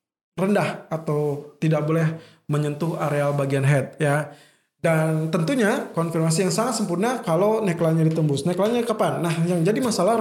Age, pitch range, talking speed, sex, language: 20-39, 160-205 Hz, 140 wpm, male, Indonesian